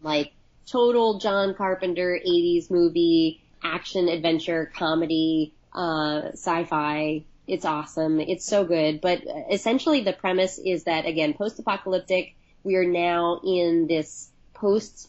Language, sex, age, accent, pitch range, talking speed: English, female, 30-49, American, 160-185 Hz, 120 wpm